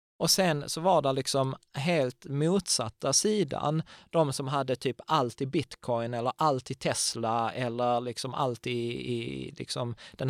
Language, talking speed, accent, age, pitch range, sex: Swedish, 155 wpm, native, 20-39, 120-160 Hz, male